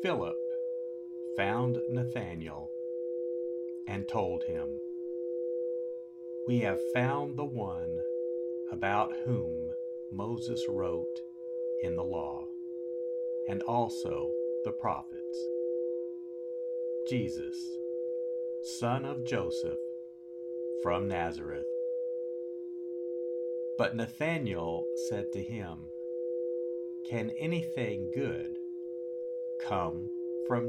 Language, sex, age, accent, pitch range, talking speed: English, male, 50-69, American, 120-170 Hz, 75 wpm